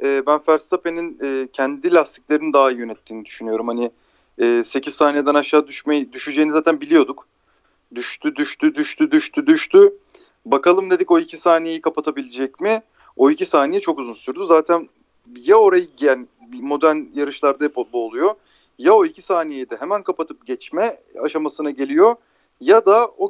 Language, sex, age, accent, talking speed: Turkish, male, 40-59, native, 145 wpm